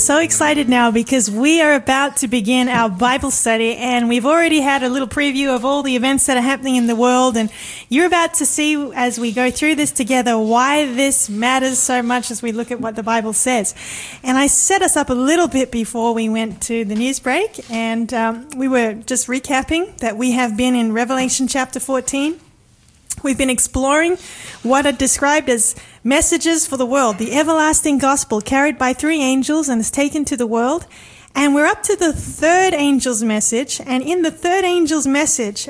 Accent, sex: Australian, female